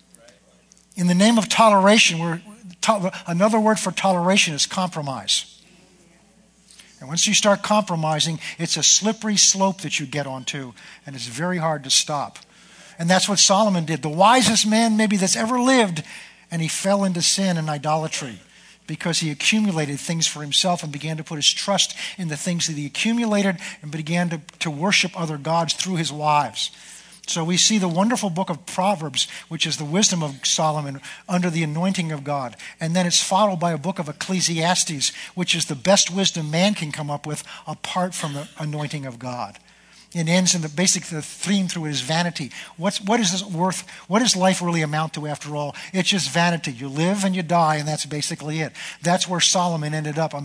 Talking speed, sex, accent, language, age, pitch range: 195 wpm, male, American, English, 50-69, 155-190 Hz